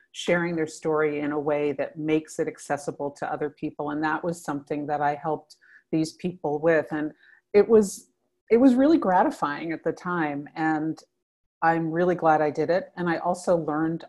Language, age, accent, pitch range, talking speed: English, 40-59, American, 150-175 Hz, 185 wpm